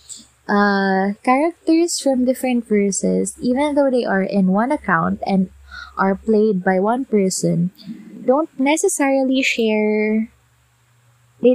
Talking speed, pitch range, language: 115 wpm, 200-245 Hz, Filipino